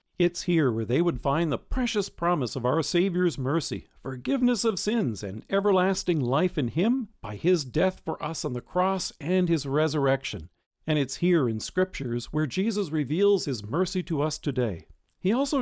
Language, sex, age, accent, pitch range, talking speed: English, male, 50-69, American, 135-200 Hz, 180 wpm